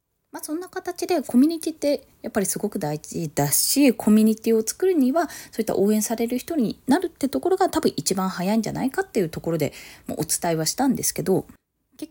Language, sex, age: Japanese, female, 20-39